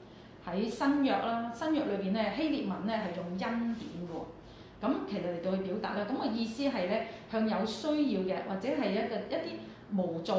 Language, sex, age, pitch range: Chinese, female, 30-49, 185-230 Hz